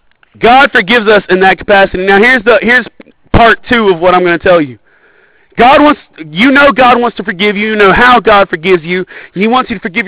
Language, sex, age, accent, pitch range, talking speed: English, male, 30-49, American, 190-245 Hz, 230 wpm